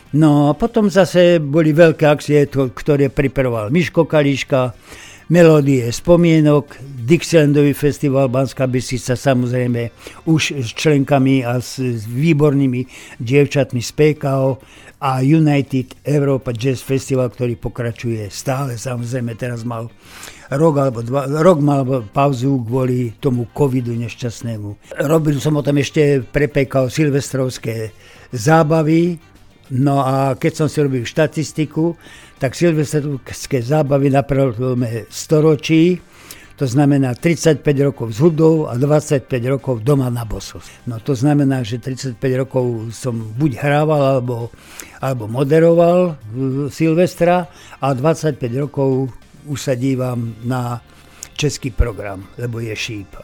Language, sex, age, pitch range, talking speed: Slovak, male, 60-79, 120-150 Hz, 120 wpm